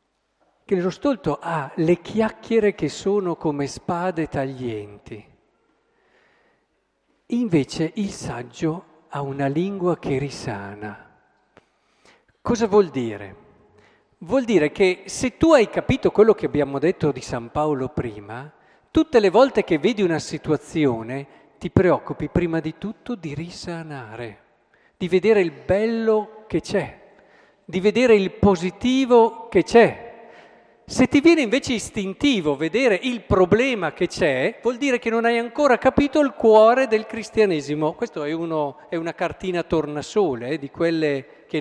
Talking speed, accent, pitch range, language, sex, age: 135 wpm, native, 150-220 Hz, Italian, male, 50-69